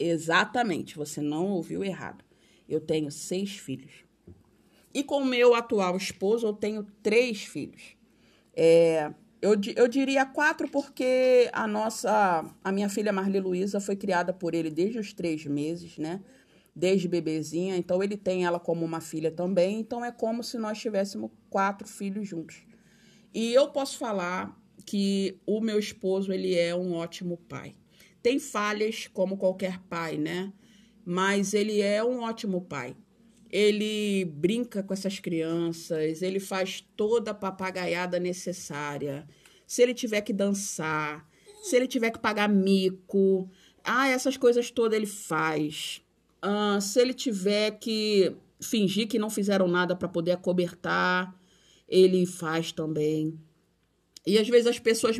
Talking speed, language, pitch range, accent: 145 wpm, Portuguese, 175-220 Hz, Brazilian